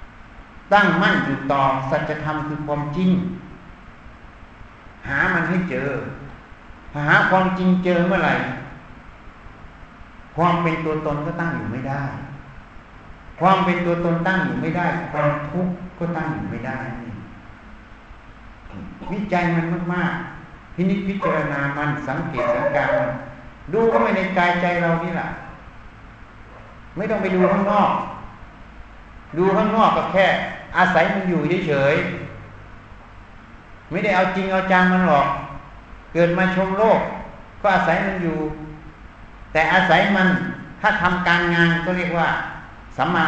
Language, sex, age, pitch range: Thai, male, 60-79, 120-180 Hz